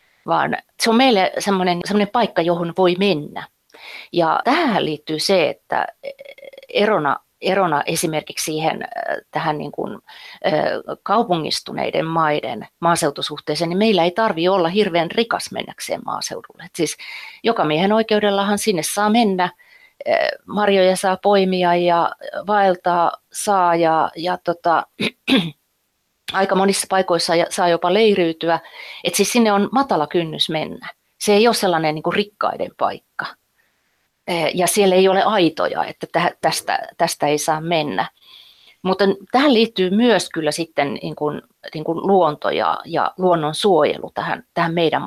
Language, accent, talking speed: Finnish, native, 130 wpm